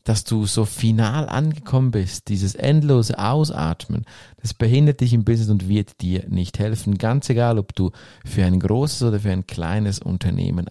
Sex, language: male, German